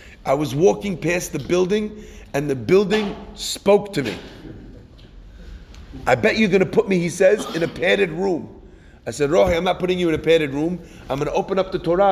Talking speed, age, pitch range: 215 wpm, 30-49, 155-205 Hz